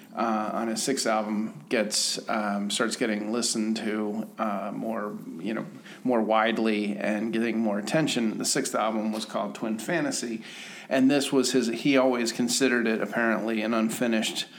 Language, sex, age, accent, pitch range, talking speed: English, male, 40-59, American, 110-125 Hz, 160 wpm